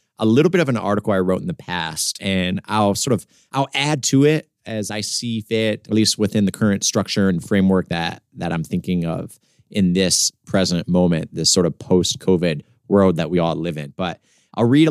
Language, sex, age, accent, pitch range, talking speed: English, male, 30-49, American, 95-125 Hz, 215 wpm